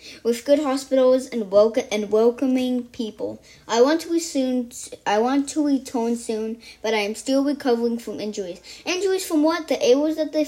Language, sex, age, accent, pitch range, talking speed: English, female, 20-39, American, 205-265 Hz, 190 wpm